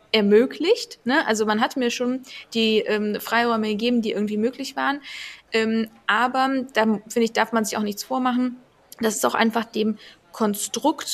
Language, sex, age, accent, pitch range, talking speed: German, female, 20-39, German, 210-240 Hz, 165 wpm